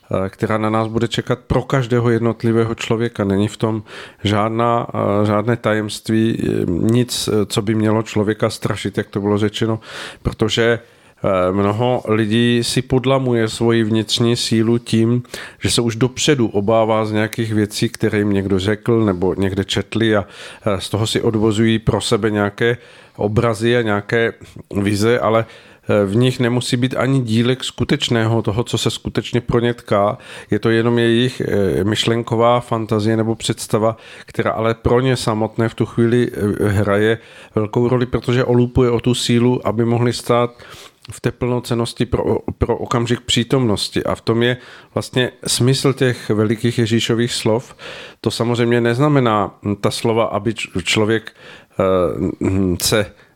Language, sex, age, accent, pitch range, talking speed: Czech, male, 50-69, native, 110-120 Hz, 145 wpm